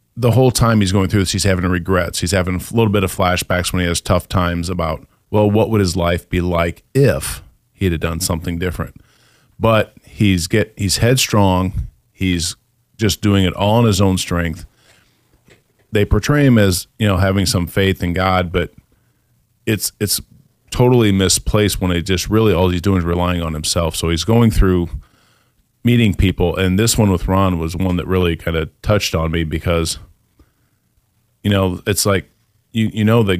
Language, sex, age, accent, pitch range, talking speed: English, male, 40-59, American, 85-105 Hz, 190 wpm